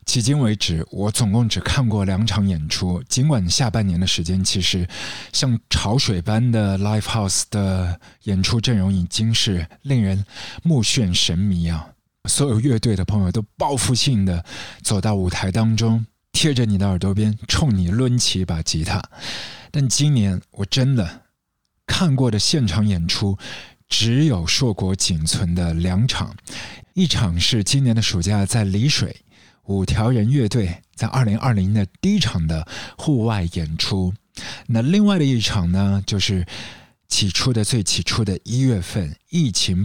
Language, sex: Chinese, male